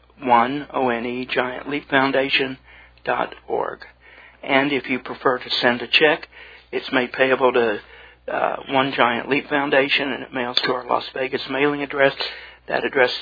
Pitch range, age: 125-140 Hz, 60-79